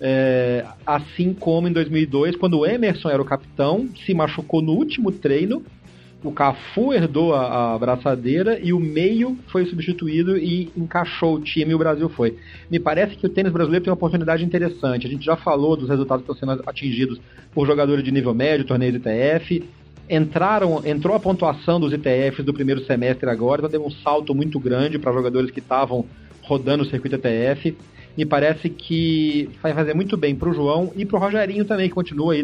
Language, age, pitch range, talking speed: Portuguese, 40-59, 130-165 Hz, 190 wpm